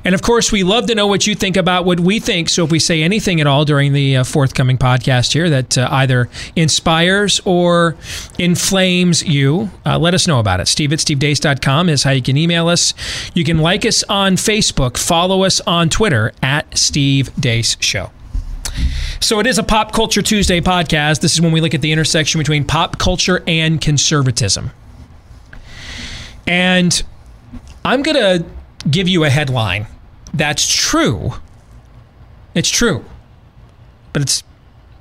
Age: 40-59